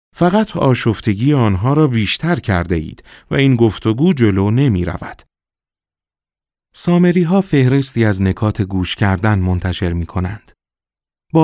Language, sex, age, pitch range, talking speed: Persian, male, 40-59, 90-120 Hz, 125 wpm